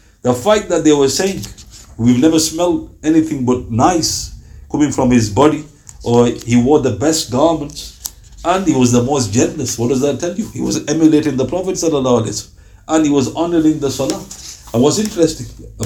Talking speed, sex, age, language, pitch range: 180 wpm, male, 60-79, English, 115-185 Hz